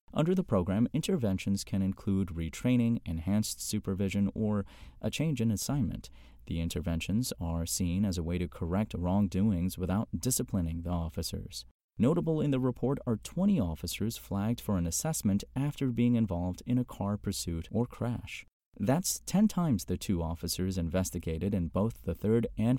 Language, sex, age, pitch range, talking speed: English, male, 30-49, 85-115 Hz, 160 wpm